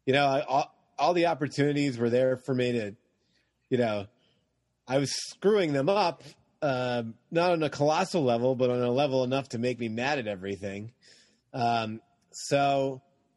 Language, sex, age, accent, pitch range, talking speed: English, male, 30-49, American, 110-145 Hz, 170 wpm